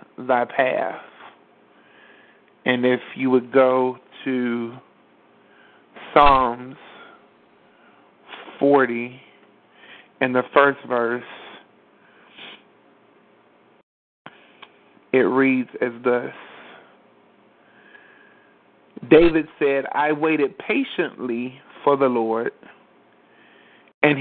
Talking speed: 65 wpm